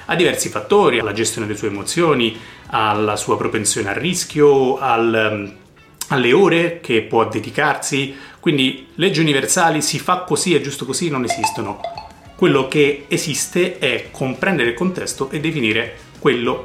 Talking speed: 135 wpm